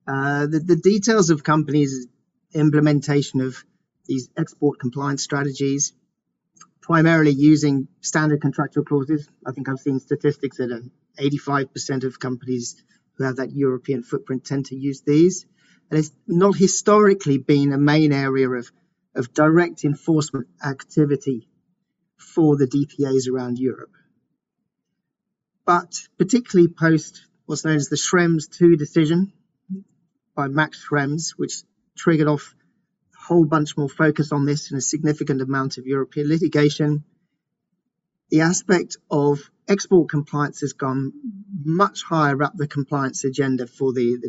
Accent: British